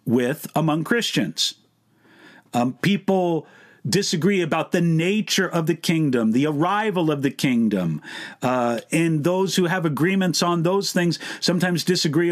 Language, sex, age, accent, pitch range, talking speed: English, male, 50-69, American, 160-225 Hz, 135 wpm